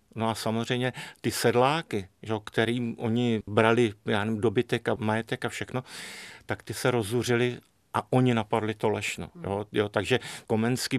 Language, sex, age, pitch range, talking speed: Czech, male, 50-69, 110-125 Hz, 145 wpm